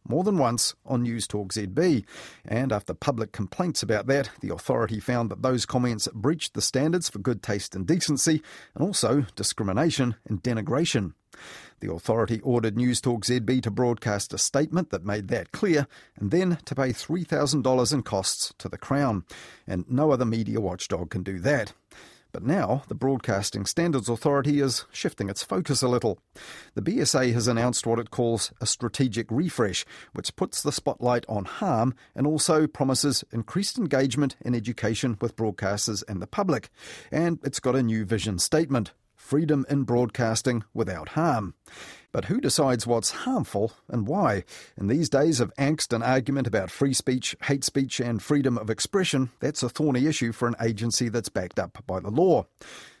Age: 40-59